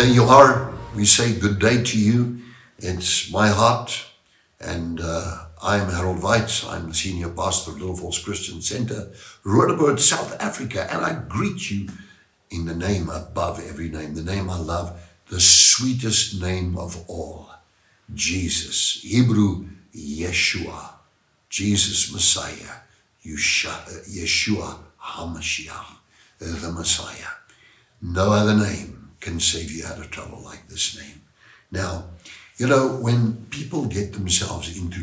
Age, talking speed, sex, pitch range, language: 60-79, 135 wpm, male, 85-115 Hz, English